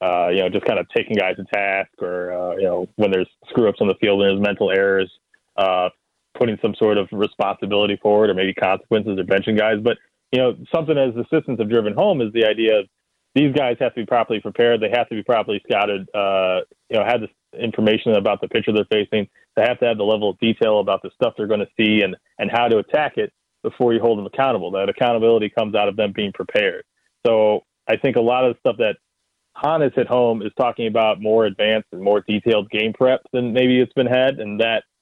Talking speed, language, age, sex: 235 wpm, English, 30-49, male